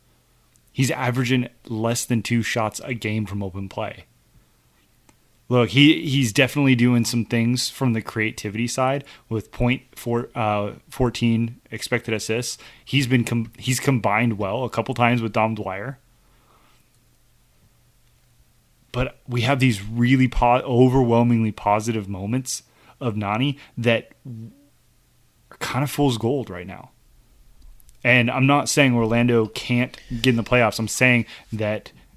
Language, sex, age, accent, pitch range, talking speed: English, male, 20-39, American, 110-125 Hz, 130 wpm